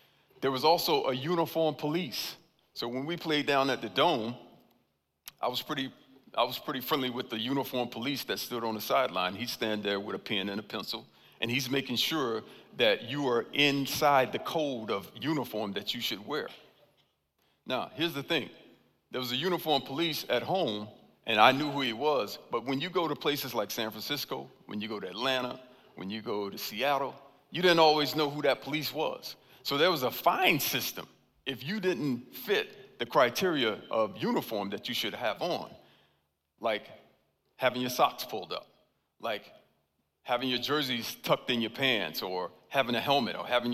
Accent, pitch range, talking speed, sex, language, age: American, 115-155 Hz, 190 wpm, male, English, 50-69